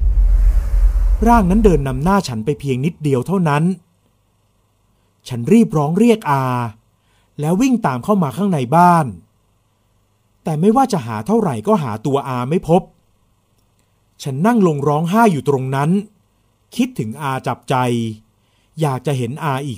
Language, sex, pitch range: Thai, male, 110-175 Hz